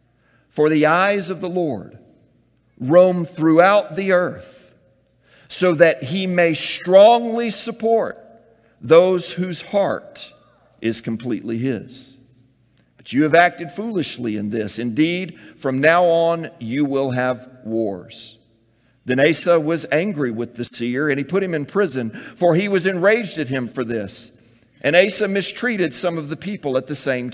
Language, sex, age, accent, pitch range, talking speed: English, male, 50-69, American, 120-180 Hz, 150 wpm